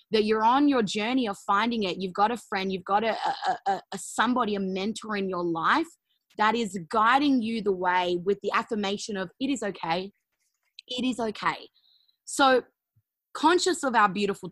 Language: English